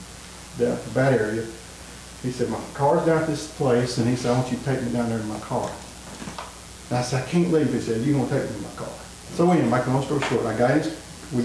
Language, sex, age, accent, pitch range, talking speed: English, male, 50-69, American, 115-140 Hz, 265 wpm